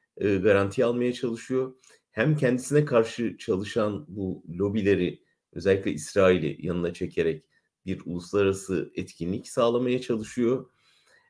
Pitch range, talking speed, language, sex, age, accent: 95-125 Hz, 95 wpm, German, male, 40-59, Turkish